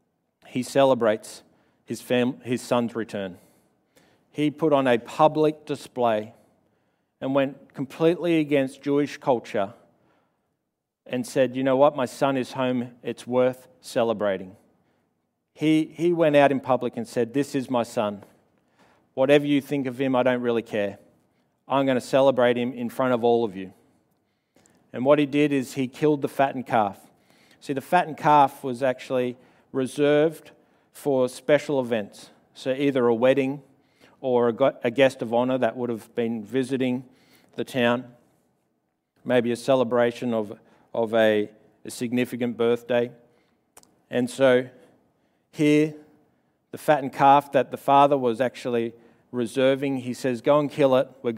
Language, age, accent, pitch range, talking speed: English, 40-59, Australian, 120-140 Hz, 145 wpm